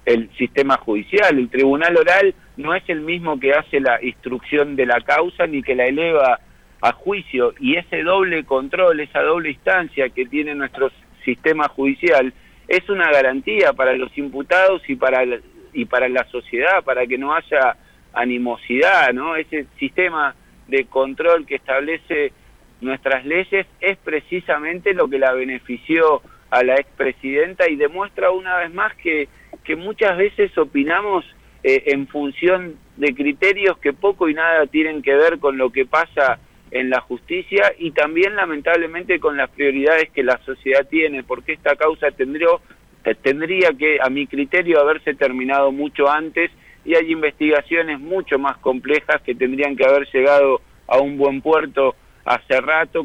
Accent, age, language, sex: Argentinian, 50-69, Spanish, male